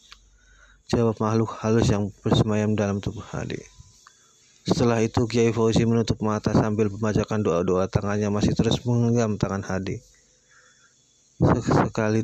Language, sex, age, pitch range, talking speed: Indonesian, male, 30-49, 100-115 Hz, 120 wpm